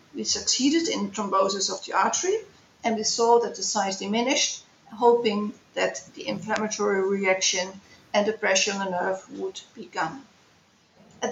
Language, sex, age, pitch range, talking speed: English, female, 50-69, 215-255 Hz, 155 wpm